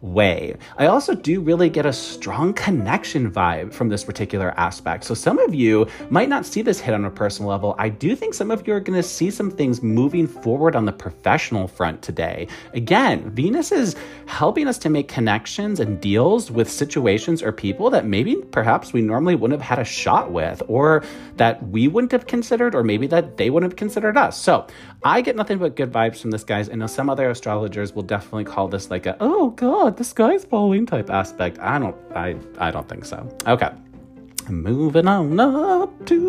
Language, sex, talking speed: English, male, 205 wpm